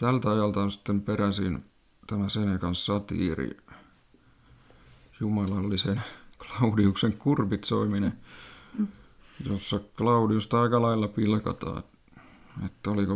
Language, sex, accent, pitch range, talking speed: Finnish, male, native, 100-115 Hz, 80 wpm